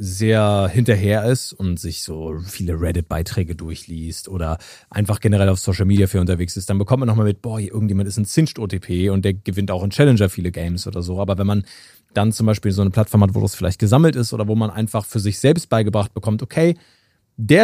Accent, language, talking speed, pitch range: German, German, 220 wpm, 95-125 Hz